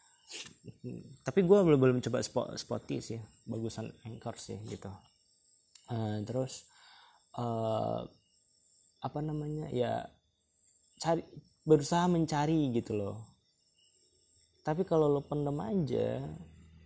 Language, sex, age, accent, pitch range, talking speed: Indonesian, male, 20-39, native, 110-140 Hz, 95 wpm